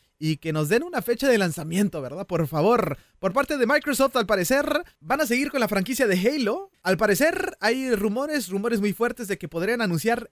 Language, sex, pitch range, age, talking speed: Spanish, male, 185-245 Hz, 20-39, 210 wpm